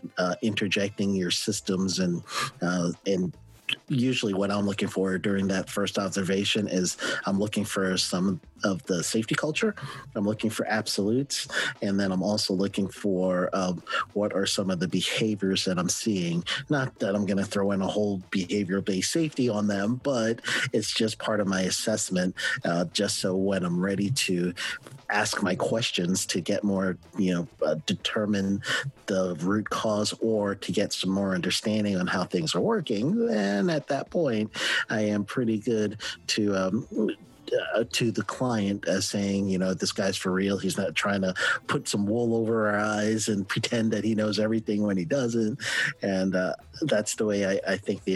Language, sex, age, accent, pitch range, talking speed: English, male, 40-59, American, 95-110 Hz, 185 wpm